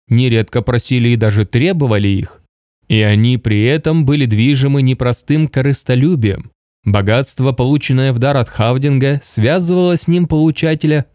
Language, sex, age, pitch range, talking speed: Russian, male, 20-39, 110-140 Hz, 130 wpm